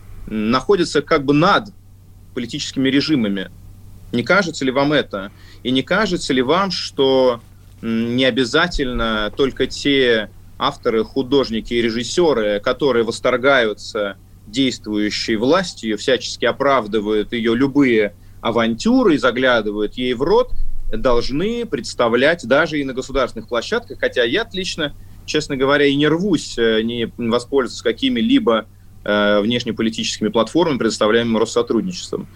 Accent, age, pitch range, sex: native, 30-49, 105-140 Hz, male